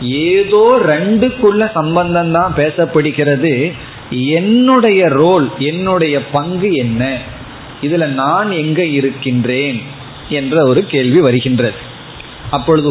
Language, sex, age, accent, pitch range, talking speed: Tamil, male, 30-49, native, 135-175 Hz, 90 wpm